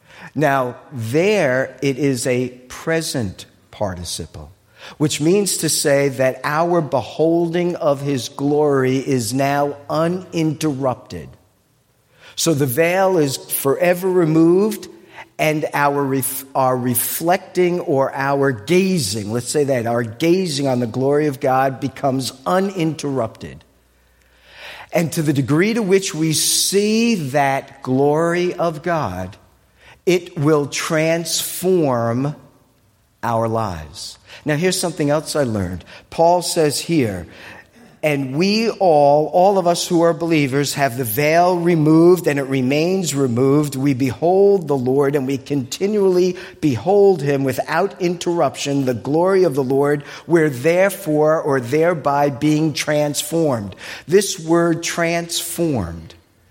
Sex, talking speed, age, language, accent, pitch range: male, 120 wpm, 50-69, English, American, 130-170 Hz